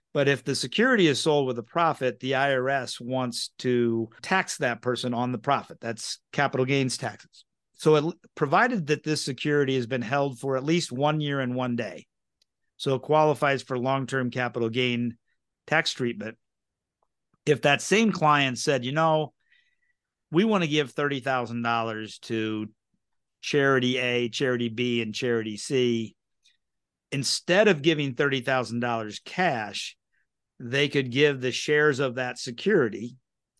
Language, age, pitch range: English, 50-69, 120-150 Hz